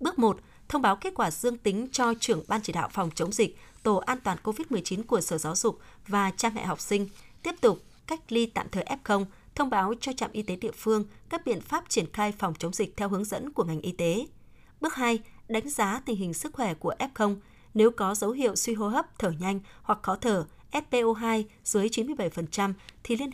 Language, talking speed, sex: Vietnamese, 220 wpm, female